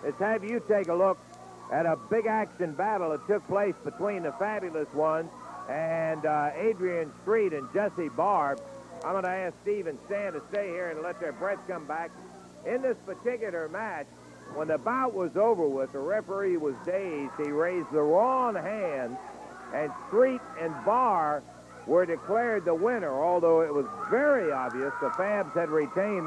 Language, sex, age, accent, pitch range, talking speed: English, male, 60-79, American, 145-200 Hz, 175 wpm